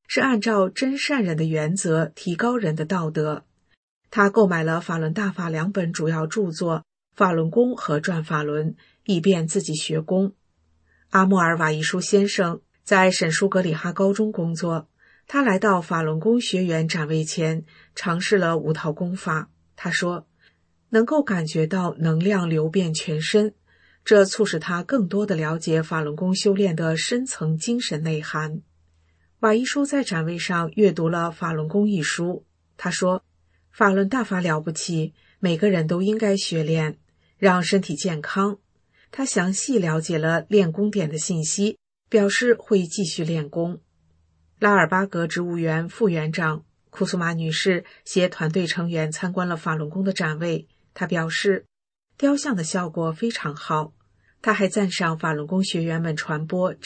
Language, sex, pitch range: English, female, 160-195 Hz